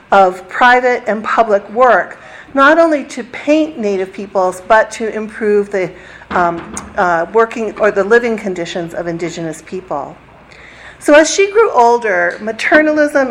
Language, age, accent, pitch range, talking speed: English, 50-69, American, 190-245 Hz, 140 wpm